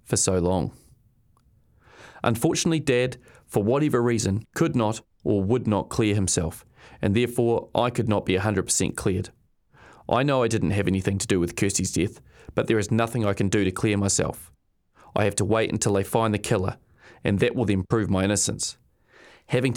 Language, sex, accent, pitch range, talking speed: English, male, Australian, 100-120 Hz, 190 wpm